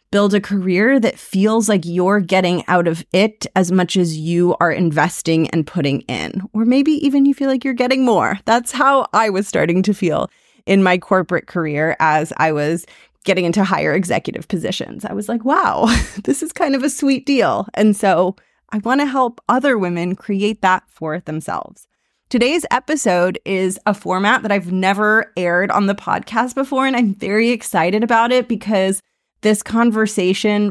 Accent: American